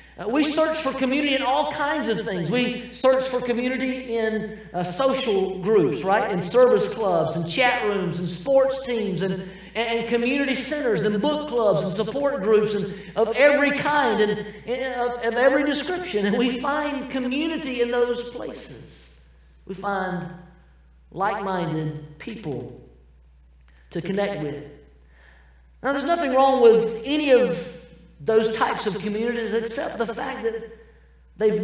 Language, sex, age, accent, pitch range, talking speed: English, male, 40-59, American, 155-250 Hz, 145 wpm